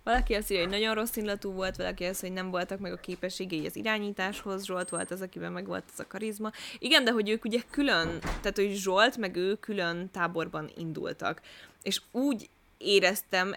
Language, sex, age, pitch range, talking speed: Hungarian, female, 10-29, 175-225 Hz, 190 wpm